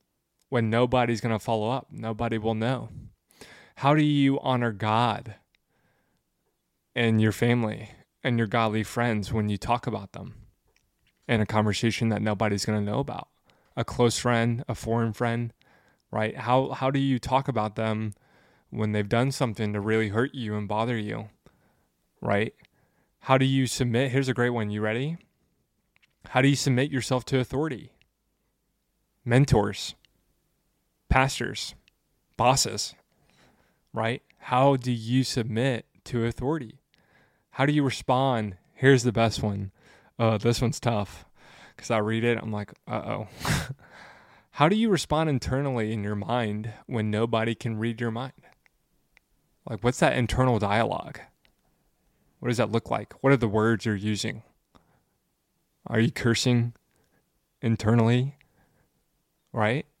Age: 20-39